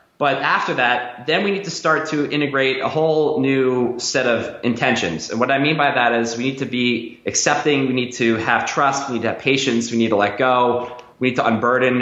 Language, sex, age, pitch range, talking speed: English, male, 20-39, 115-135 Hz, 235 wpm